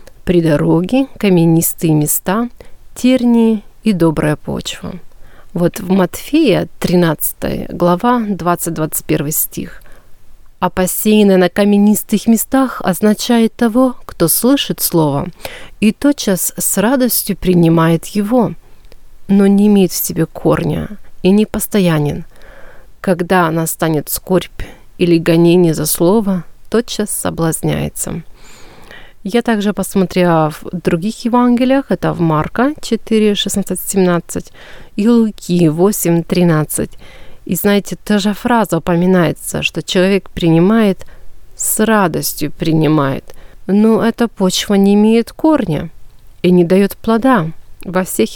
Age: 30-49